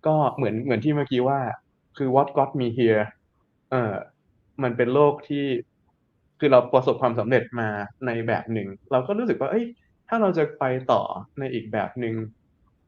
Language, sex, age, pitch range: English, male, 20-39, 105-135 Hz